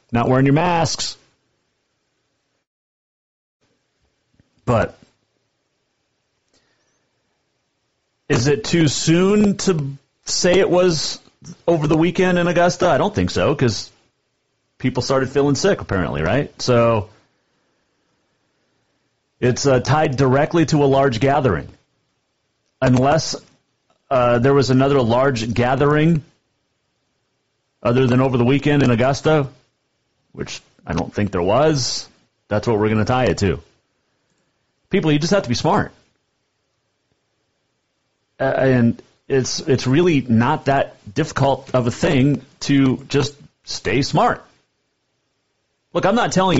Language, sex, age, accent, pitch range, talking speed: English, male, 40-59, American, 120-150 Hz, 115 wpm